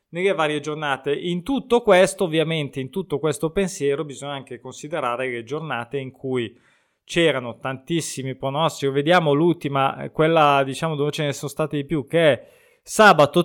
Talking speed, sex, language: 155 wpm, male, Italian